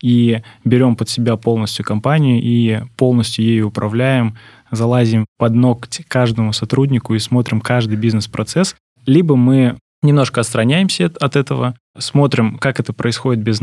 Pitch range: 115-130 Hz